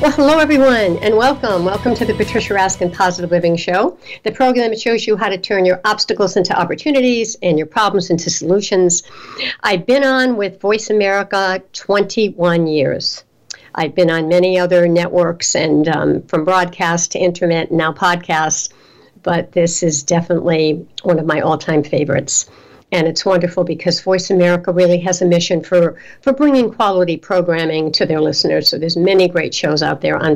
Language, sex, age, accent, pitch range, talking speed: English, female, 60-79, American, 170-230 Hz, 175 wpm